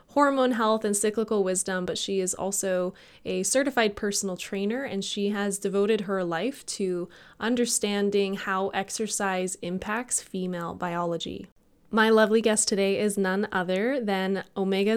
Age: 20-39